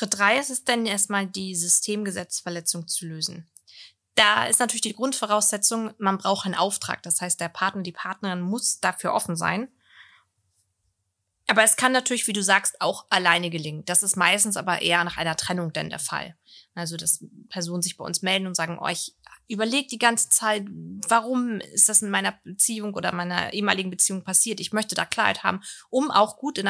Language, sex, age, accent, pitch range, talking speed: German, female, 20-39, German, 175-210 Hz, 190 wpm